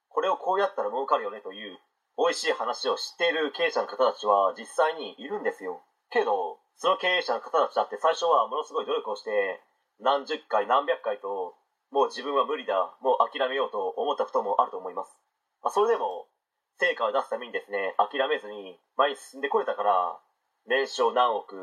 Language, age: Japanese, 40-59